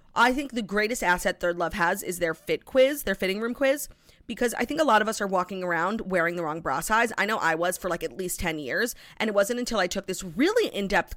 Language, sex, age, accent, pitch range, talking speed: English, female, 30-49, American, 175-245 Hz, 270 wpm